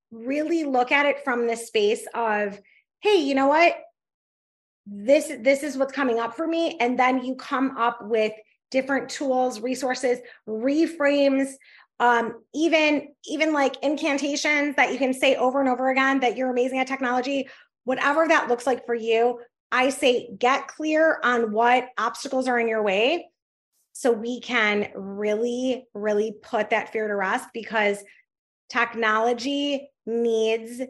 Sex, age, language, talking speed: female, 20-39, English, 150 wpm